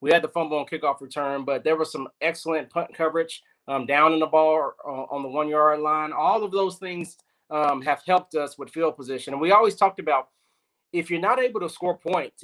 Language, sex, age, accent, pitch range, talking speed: English, male, 30-49, American, 150-180 Hz, 230 wpm